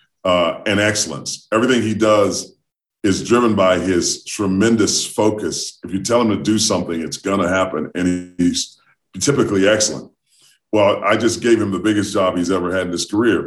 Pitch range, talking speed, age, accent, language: 90-110 Hz, 180 wpm, 40-59, American, English